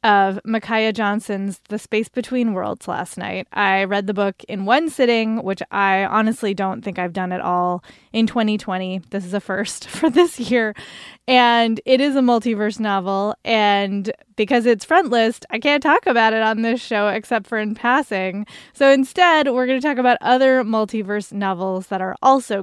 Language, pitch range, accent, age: English, 205-260 Hz, American, 20-39